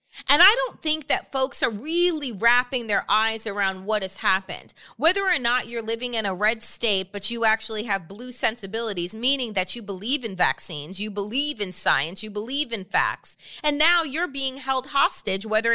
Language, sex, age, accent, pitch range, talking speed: English, female, 30-49, American, 210-315 Hz, 195 wpm